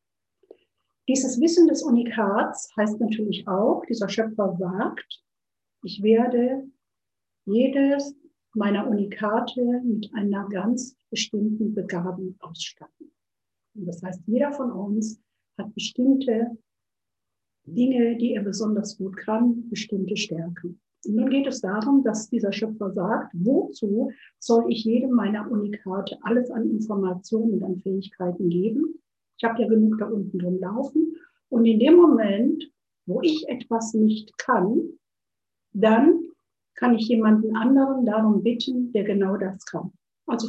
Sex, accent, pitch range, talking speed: female, German, 205-260 Hz, 125 wpm